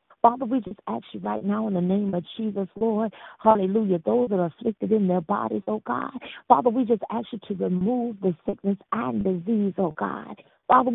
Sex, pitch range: female, 215-285 Hz